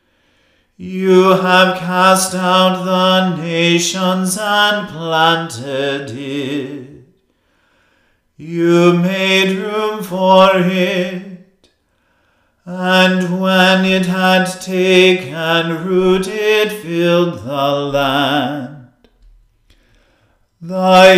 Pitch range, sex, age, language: 170-185 Hz, male, 40-59, English